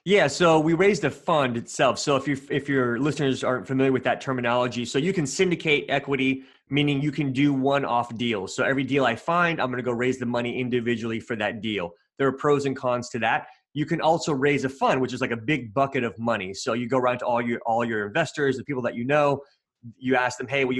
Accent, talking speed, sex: American, 250 wpm, male